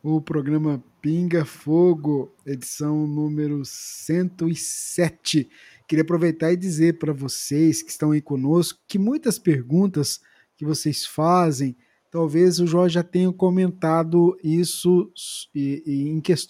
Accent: Brazilian